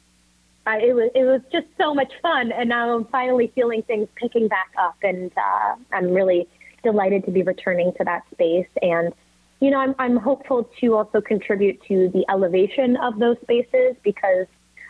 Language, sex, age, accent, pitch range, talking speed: English, female, 20-39, American, 185-245 Hz, 180 wpm